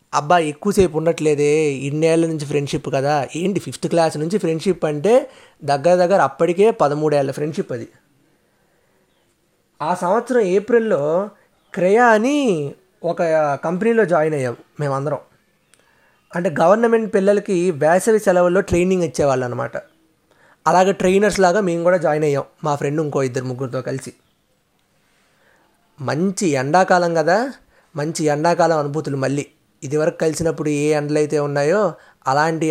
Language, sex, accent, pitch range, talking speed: Telugu, male, native, 145-180 Hz, 115 wpm